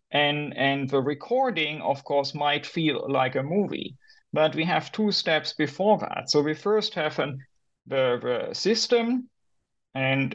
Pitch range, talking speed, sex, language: 140-185 Hz, 155 wpm, male, English